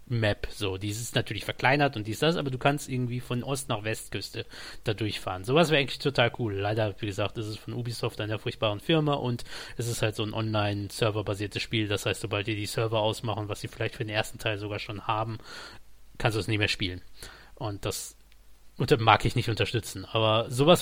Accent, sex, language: German, male, German